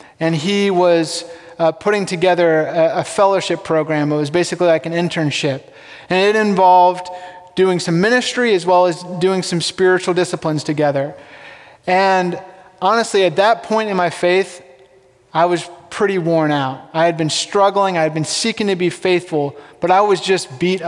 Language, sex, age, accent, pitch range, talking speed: English, male, 20-39, American, 155-190 Hz, 170 wpm